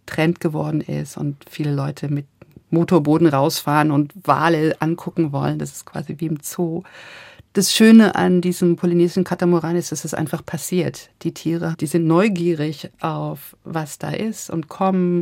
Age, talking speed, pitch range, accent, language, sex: 50-69, 165 wpm, 145-175 Hz, German, German, female